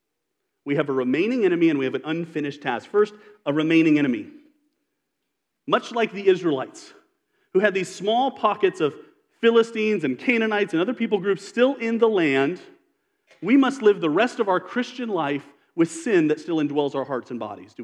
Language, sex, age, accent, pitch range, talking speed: English, male, 40-59, American, 170-260 Hz, 185 wpm